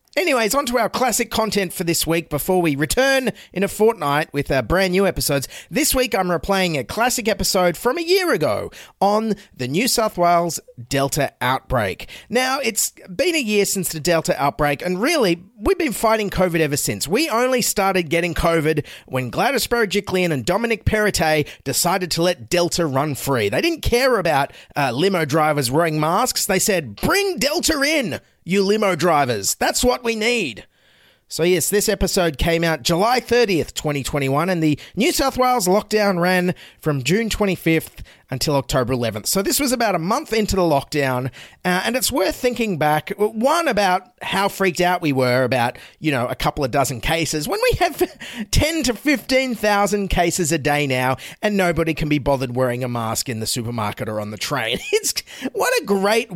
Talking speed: 185 wpm